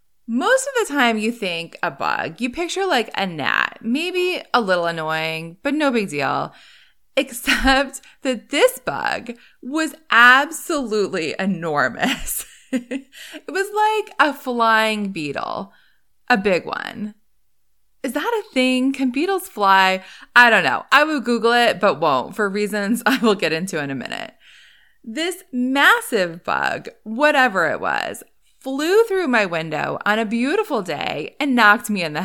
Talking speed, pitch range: 150 wpm, 205-285 Hz